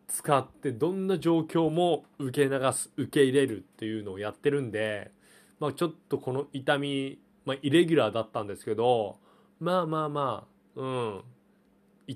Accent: native